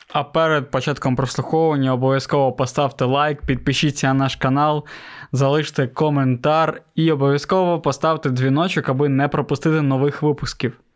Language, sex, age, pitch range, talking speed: Ukrainian, male, 20-39, 130-155 Hz, 120 wpm